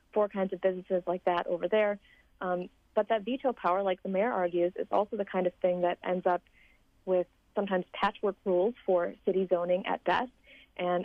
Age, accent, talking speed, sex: 40-59, American, 195 wpm, female